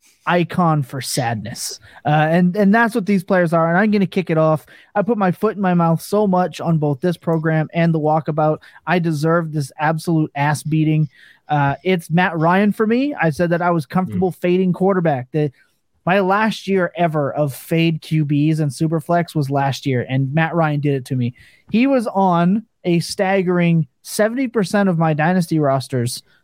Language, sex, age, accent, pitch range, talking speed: English, male, 30-49, American, 155-190 Hz, 190 wpm